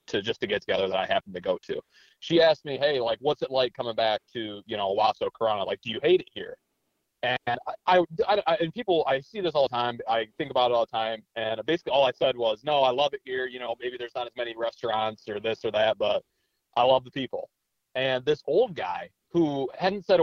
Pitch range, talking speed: 120-160 Hz, 255 wpm